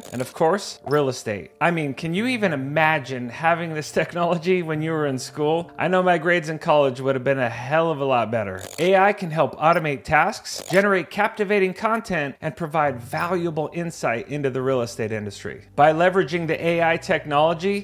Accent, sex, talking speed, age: American, male, 190 wpm, 30-49